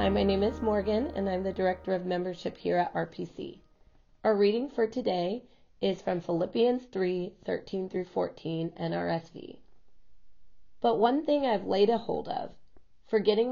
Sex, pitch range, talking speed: female, 180-230 Hz, 155 wpm